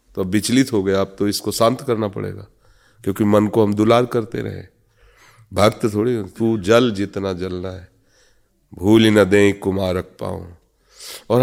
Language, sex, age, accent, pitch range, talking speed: Hindi, male, 30-49, native, 95-115 Hz, 170 wpm